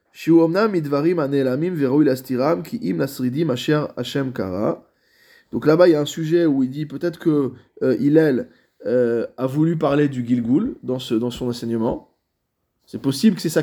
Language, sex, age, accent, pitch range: French, male, 20-39, French, 130-175 Hz